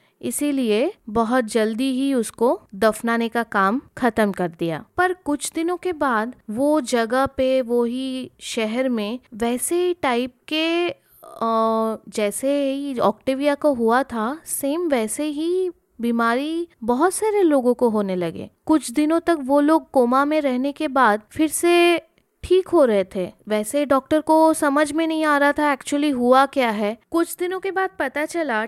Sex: female